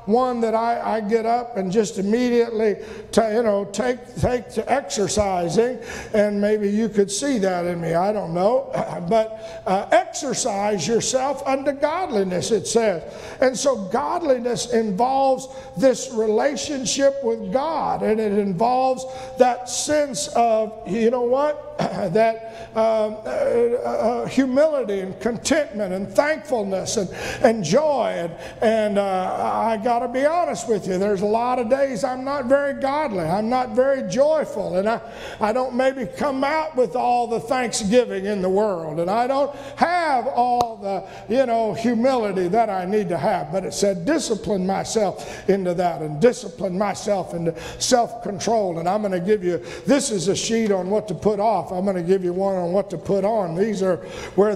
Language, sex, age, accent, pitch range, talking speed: English, male, 50-69, American, 195-255 Hz, 175 wpm